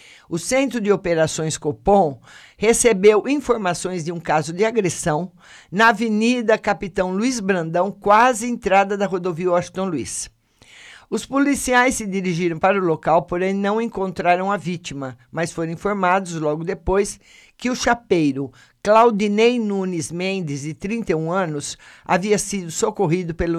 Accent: Brazilian